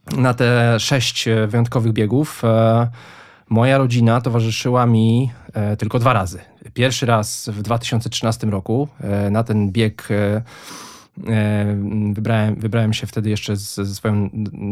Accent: native